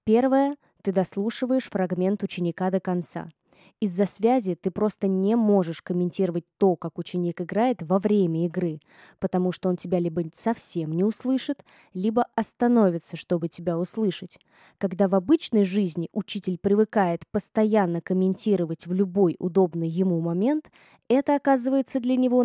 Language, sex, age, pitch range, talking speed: Russian, female, 20-39, 175-215 Hz, 135 wpm